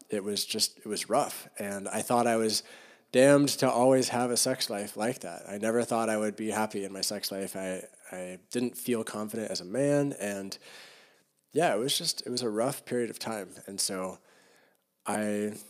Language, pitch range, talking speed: English, 105-125 Hz, 205 wpm